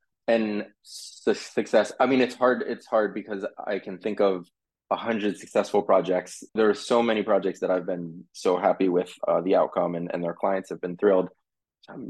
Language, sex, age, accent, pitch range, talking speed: English, male, 20-39, American, 95-115 Hz, 200 wpm